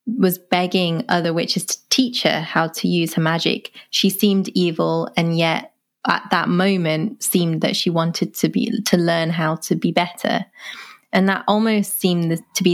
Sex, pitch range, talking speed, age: female, 165-195 Hz, 185 wpm, 20-39